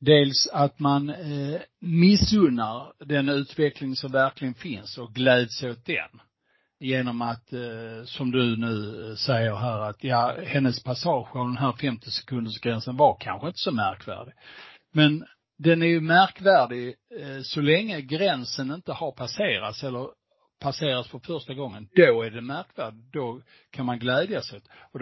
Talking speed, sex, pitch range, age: 155 wpm, male, 120-150 Hz, 60-79